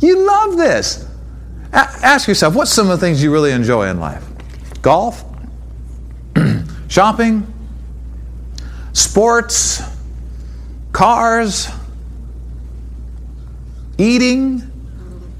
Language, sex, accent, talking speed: English, male, American, 80 wpm